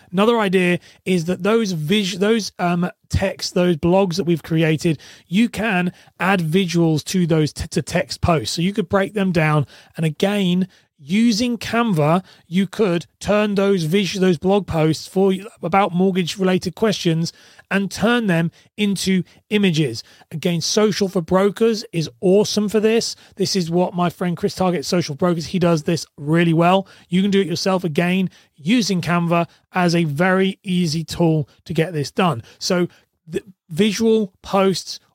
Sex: male